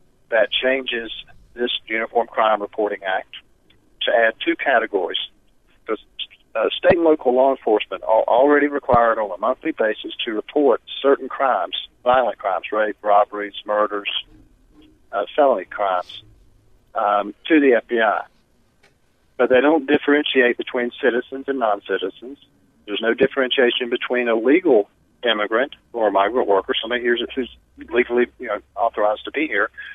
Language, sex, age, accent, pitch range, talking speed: English, male, 50-69, American, 110-135 Hz, 135 wpm